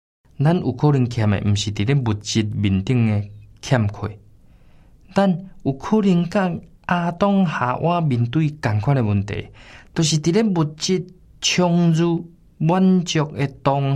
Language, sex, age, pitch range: Chinese, male, 20-39, 110-160 Hz